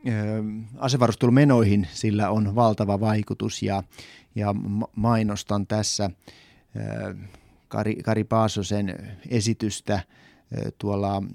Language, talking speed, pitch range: Finnish, 70 wpm, 105-115 Hz